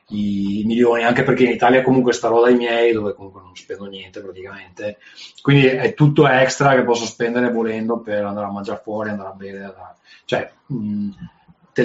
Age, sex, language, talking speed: 30-49, male, Italian, 175 wpm